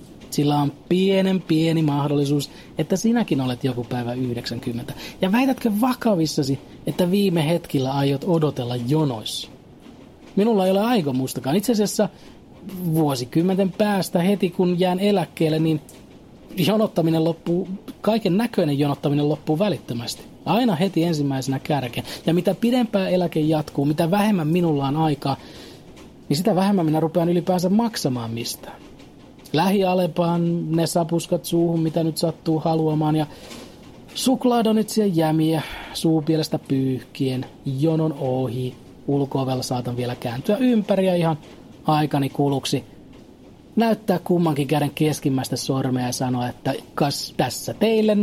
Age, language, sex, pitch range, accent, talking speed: 30-49, Finnish, male, 140-190 Hz, native, 120 wpm